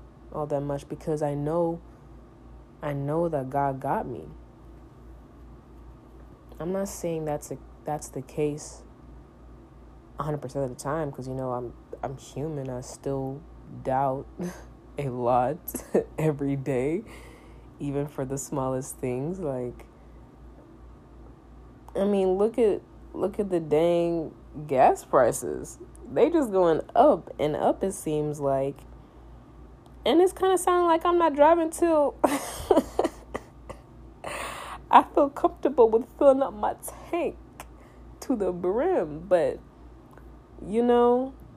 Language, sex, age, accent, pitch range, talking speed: English, female, 10-29, American, 140-190 Hz, 125 wpm